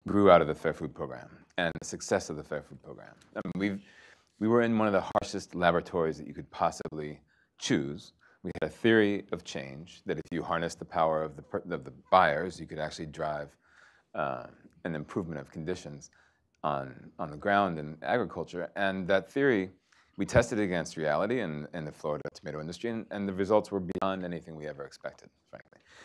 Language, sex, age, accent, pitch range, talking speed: English, male, 30-49, American, 80-95 Hz, 205 wpm